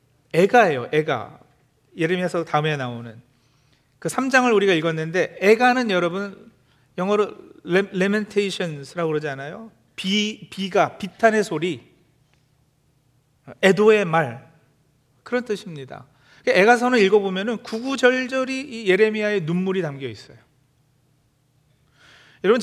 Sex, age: male, 40-59